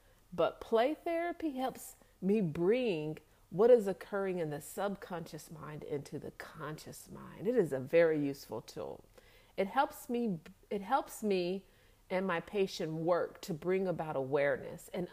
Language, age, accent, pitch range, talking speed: English, 50-69, American, 175-275 Hz, 150 wpm